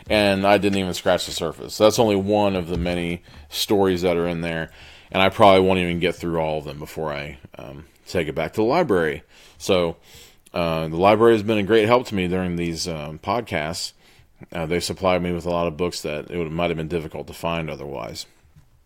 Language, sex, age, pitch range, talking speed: English, male, 30-49, 80-100 Hz, 225 wpm